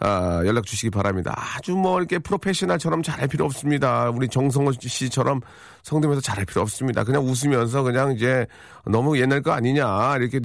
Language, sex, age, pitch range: Korean, male, 40-59, 105-140 Hz